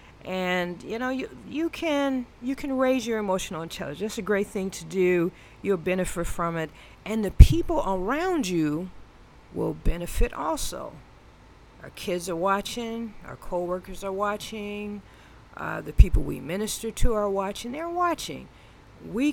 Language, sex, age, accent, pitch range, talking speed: English, female, 40-59, American, 165-215 Hz, 150 wpm